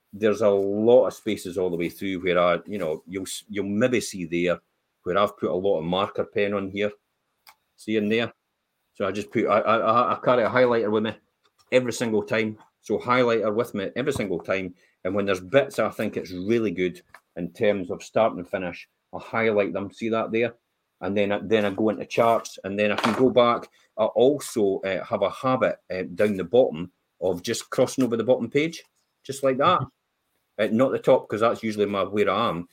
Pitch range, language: 95-120 Hz, English